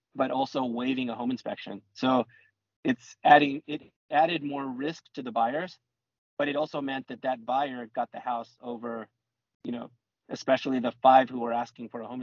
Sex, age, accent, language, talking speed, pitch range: male, 30-49, American, English, 185 wpm, 120-140 Hz